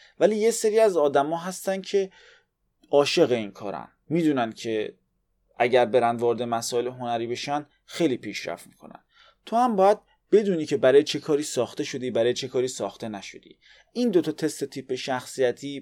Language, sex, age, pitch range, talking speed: Persian, male, 30-49, 125-165 Hz, 150 wpm